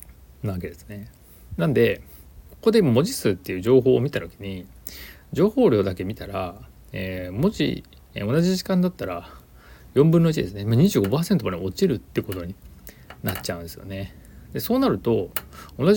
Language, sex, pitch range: Japanese, male, 85-125 Hz